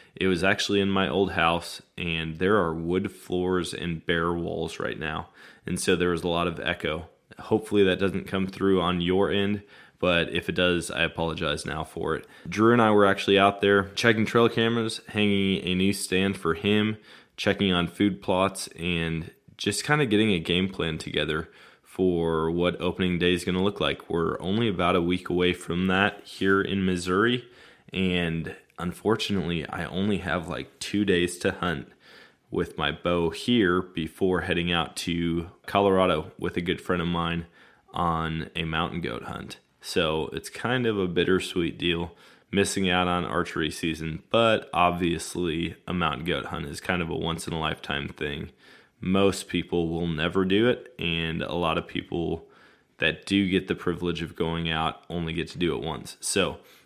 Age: 20-39